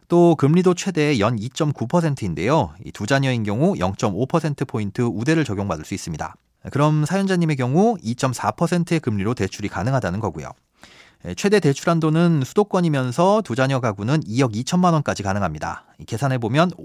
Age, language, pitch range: 40-59, Korean, 105-160 Hz